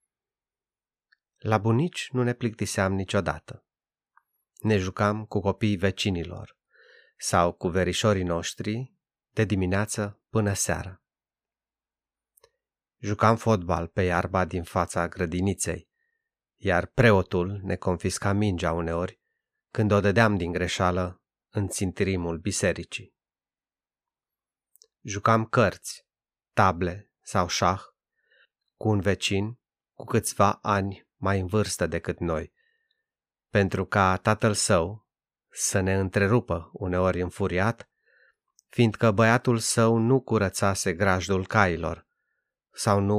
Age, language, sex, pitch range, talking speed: 30-49, Romanian, male, 90-110 Hz, 105 wpm